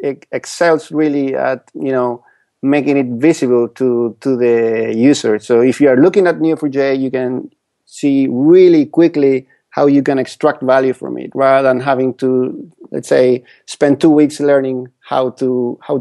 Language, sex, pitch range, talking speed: English, male, 125-155 Hz, 170 wpm